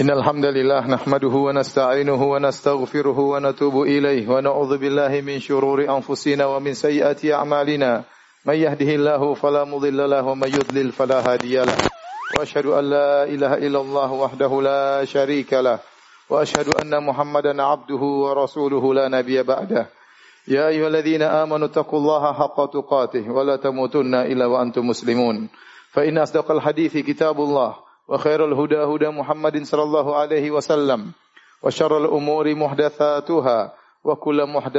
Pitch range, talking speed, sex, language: 135-150 Hz, 130 wpm, male, Indonesian